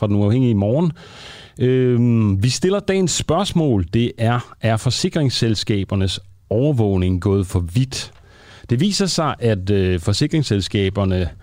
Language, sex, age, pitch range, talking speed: Danish, male, 40-59, 95-125 Hz, 110 wpm